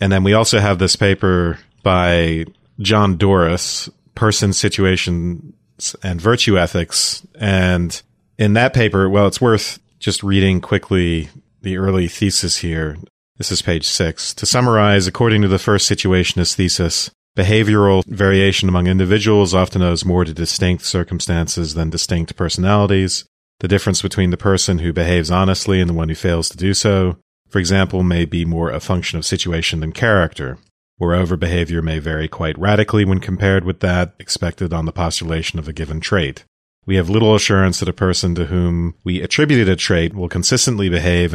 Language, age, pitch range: English, 40-59, 85-100 Hz